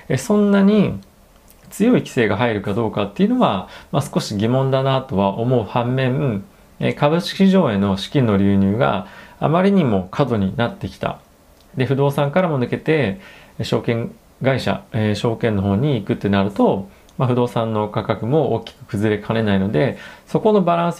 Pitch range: 100-140 Hz